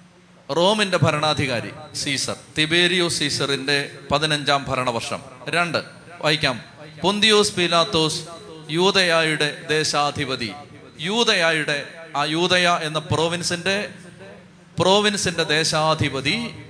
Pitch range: 140-180 Hz